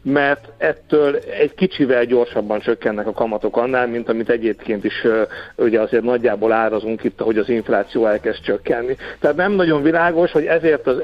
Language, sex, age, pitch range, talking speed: Hungarian, male, 60-79, 120-170 Hz, 165 wpm